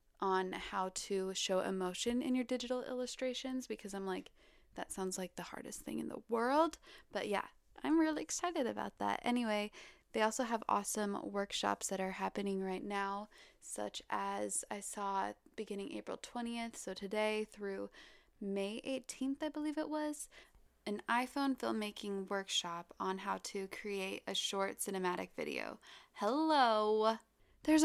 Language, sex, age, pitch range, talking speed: English, female, 20-39, 200-250 Hz, 150 wpm